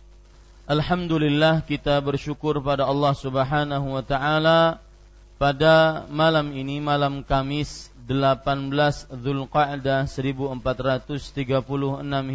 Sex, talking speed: male, 80 wpm